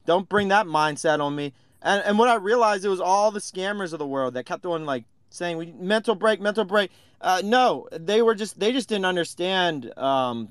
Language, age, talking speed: English, 30-49, 215 wpm